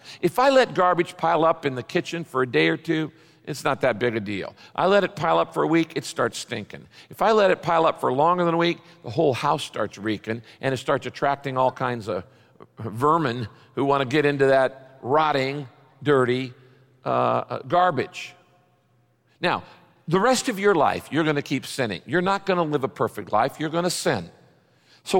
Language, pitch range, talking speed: English, 130-180 Hz, 210 wpm